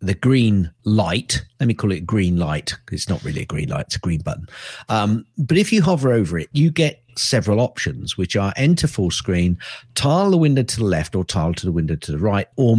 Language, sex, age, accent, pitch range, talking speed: English, male, 50-69, British, 100-135 Hz, 235 wpm